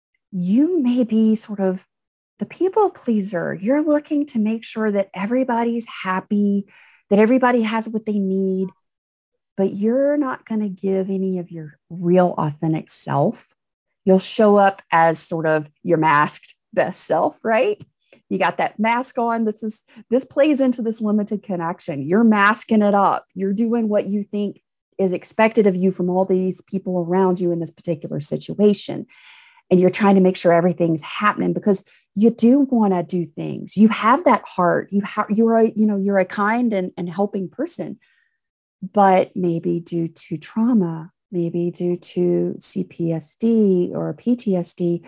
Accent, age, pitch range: American, 30-49, 175-225 Hz